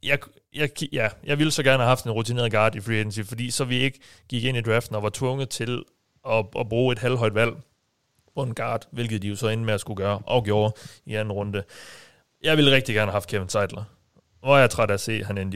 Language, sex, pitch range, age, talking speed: Danish, male, 105-135 Hz, 30-49, 265 wpm